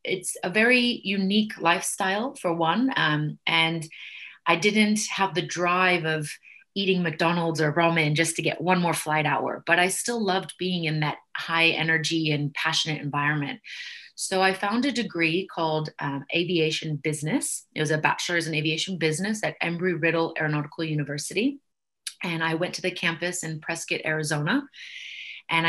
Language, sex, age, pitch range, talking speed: English, female, 30-49, 155-180 Hz, 160 wpm